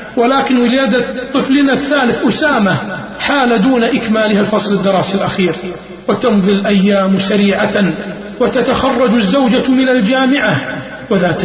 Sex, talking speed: male, 100 wpm